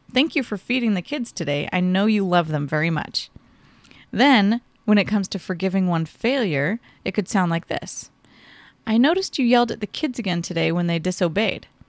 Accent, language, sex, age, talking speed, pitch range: American, English, female, 30-49, 195 wpm, 180-230 Hz